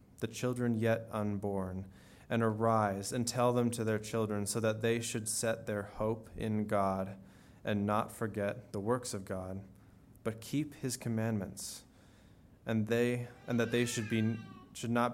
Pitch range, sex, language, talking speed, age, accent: 105-120 Hz, male, English, 165 wpm, 20-39, American